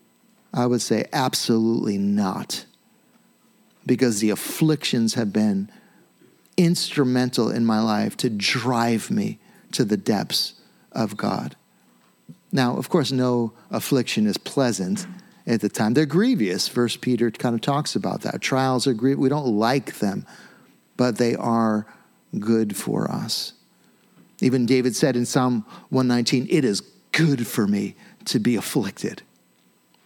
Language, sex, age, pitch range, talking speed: English, male, 50-69, 125-185 Hz, 135 wpm